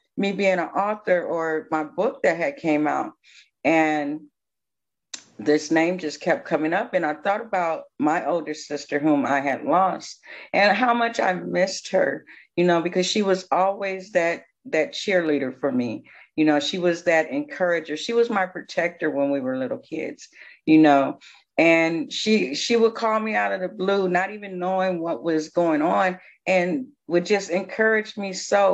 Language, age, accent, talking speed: English, 40-59, American, 180 wpm